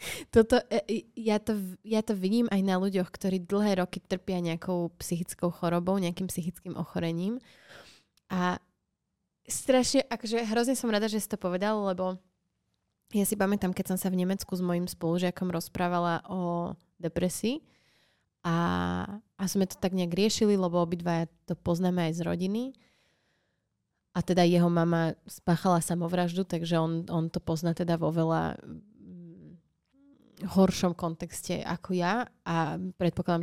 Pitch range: 175-210 Hz